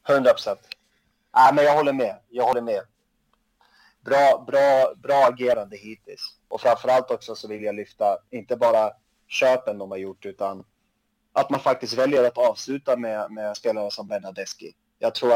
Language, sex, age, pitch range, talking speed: Swedish, male, 30-49, 105-135 Hz, 165 wpm